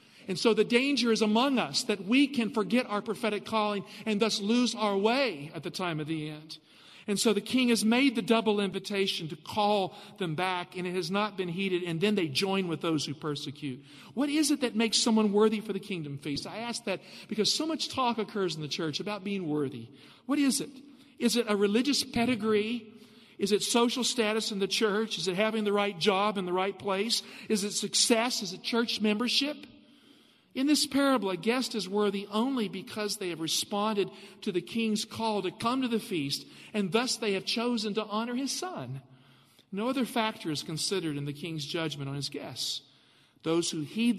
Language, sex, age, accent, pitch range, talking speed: English, male, 50-69, American, 160-225 Hz, 210 wpm